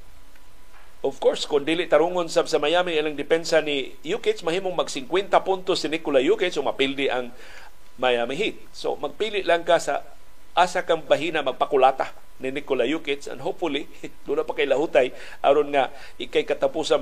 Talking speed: 160 wpm